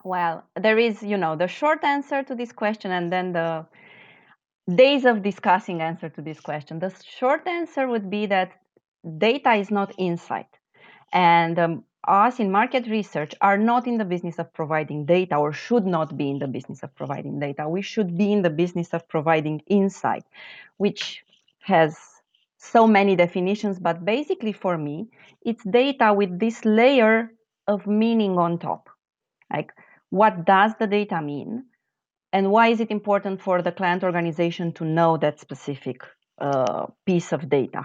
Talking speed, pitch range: 165 wpm, 165-220 Hz